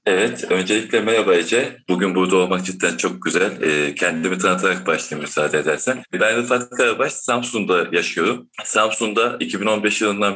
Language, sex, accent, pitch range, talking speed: Turkish, male, native, 100-125 Hz, 140 wpm